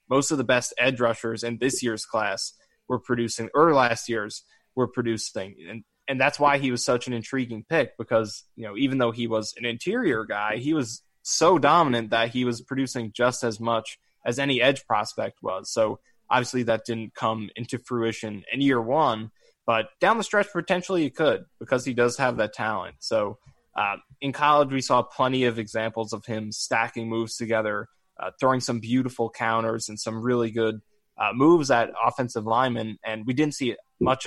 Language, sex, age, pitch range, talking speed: English, male, 20-39, 115-130 Hz, 190 wpm